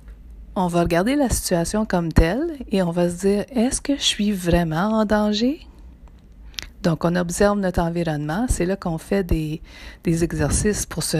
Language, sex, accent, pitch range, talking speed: French, female, Canadian, 135-195 Hz, 175 wpm